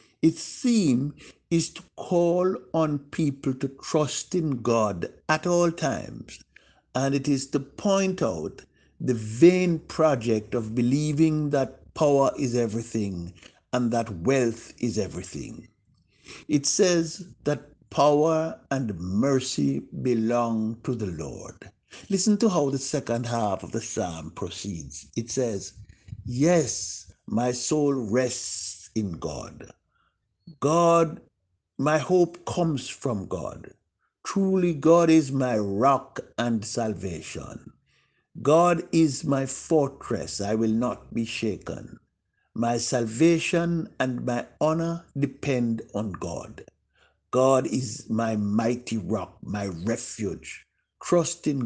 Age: 60-79